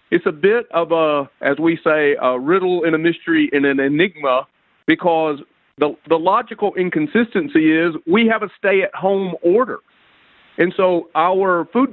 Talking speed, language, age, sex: 155 wpm, English, 50-69, male